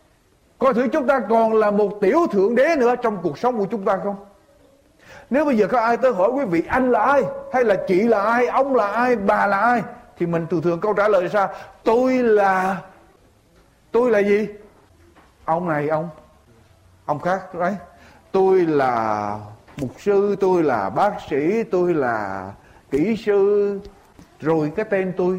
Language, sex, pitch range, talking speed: Vietnamese, male, 175-240 Hz, 180 wpm